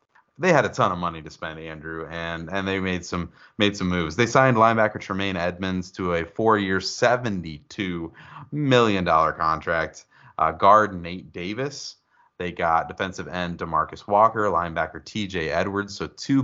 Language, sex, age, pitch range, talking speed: English, male, 30-49, 85-110 Hz, 160 wpm